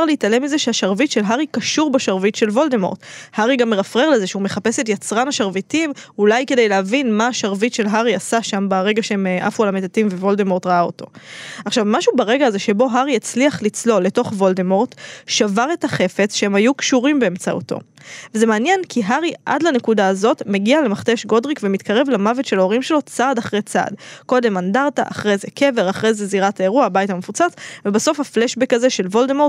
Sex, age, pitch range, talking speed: female, 20-39, 205-260 Hz, 160 wpm